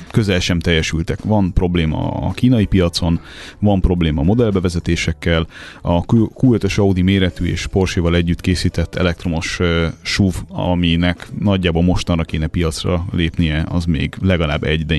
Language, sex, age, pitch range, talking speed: Hungarian, male, 30-49, 80-95 Hz, 140 wpm